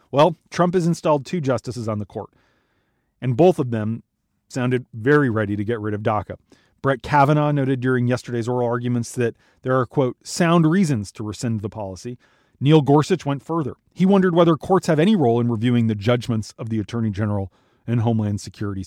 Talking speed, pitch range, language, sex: 190 wpm, 110-140 Hz, English, male